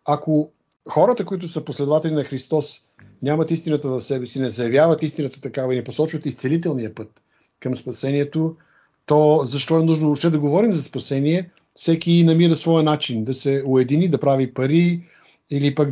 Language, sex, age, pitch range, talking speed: Bulgarian, male, 50-69, 120-150 Hz, 165 wpm